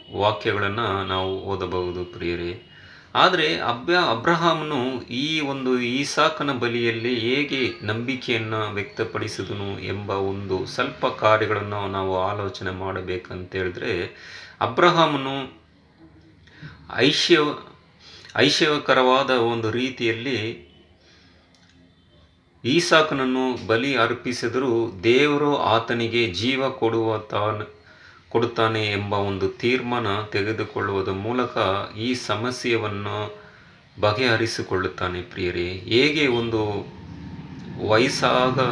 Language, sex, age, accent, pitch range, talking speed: Kannada, male, 30-49, native, 100-125 Hz, 75 wpm